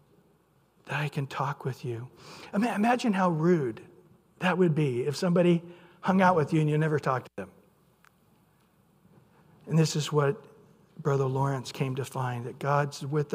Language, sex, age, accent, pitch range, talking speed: English, male, 60-79, American, 155-220 Hz, 165 wpm